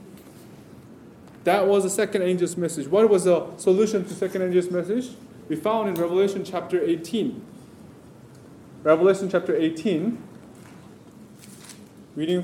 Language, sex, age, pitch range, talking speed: English, male, 20-39, 180-220 Hz, 115 wpm